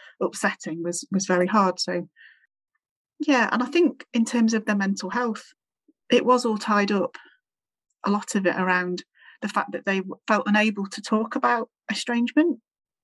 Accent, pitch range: British, 180-230 Hz